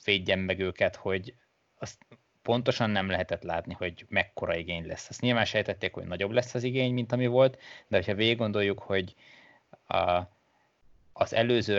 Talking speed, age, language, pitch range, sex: 165 wpm, 20-39, Hungarian, 90-105 Hz, male